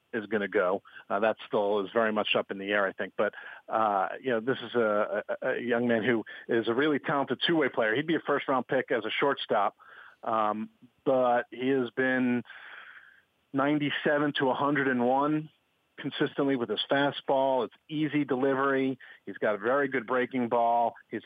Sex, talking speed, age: male, 180 wpm, 40-59